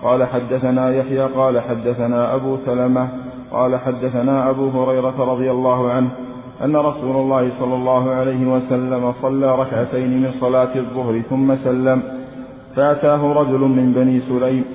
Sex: male